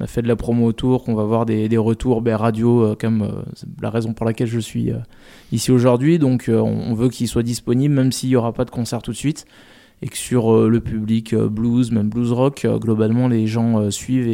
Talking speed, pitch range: 250 wpm, 110-125 Hz